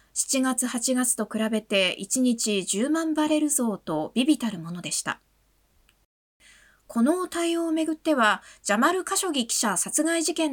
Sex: female